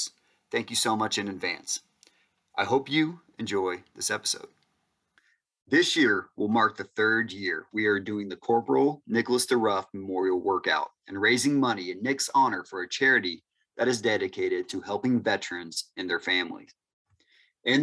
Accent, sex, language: American, male, English